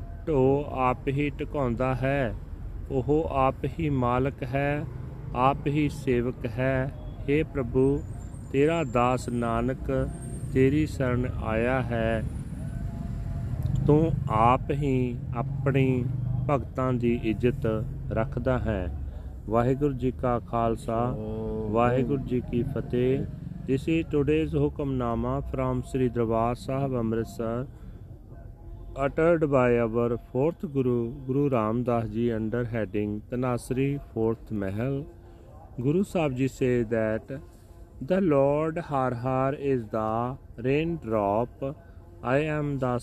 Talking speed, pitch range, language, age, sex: 105 wpm, 115-135 Hz, Punjabi, 40-59, male